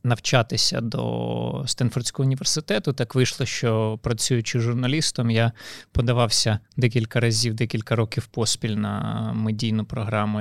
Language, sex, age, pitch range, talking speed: Ukrainian, male, 20-39, 110-135 Hz, 110 wpm